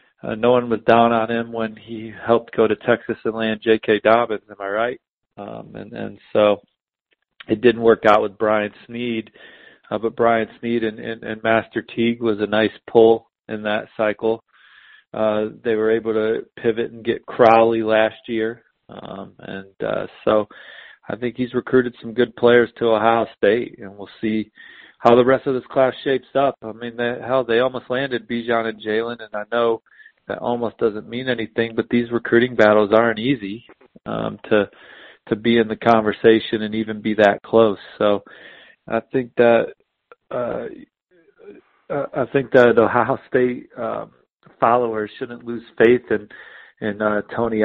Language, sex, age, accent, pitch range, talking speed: English, male, 40-59, American, 110-120 Hz, 175 wpm